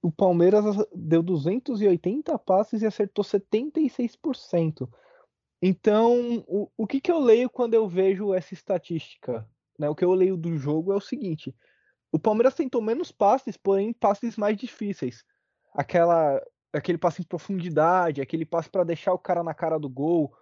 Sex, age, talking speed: male, 20-39, 155 wpm